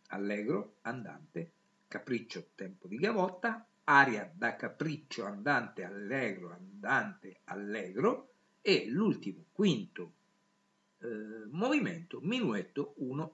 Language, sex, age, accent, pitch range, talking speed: Italian, male, 50-69, native, 120-195 Hz, 90 wpm